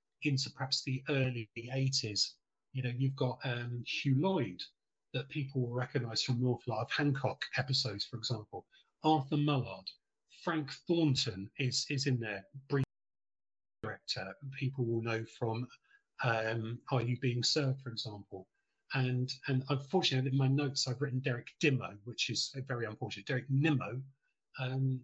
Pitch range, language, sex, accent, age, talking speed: 125-145 Hz, English, male, British, 40-59, 155 wpm